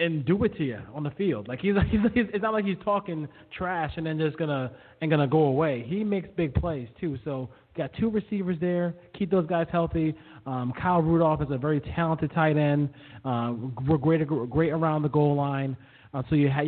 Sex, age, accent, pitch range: male, 20-39, American, 135-160 Hz